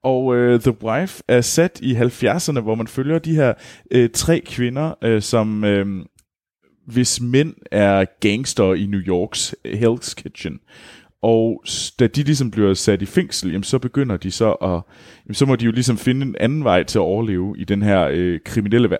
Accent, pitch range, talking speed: native, 90-125 Hz, 190 wpm